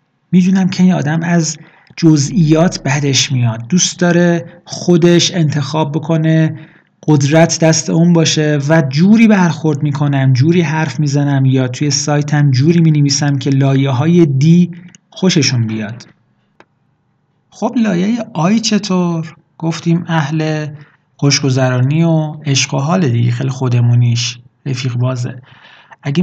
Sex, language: male, Persian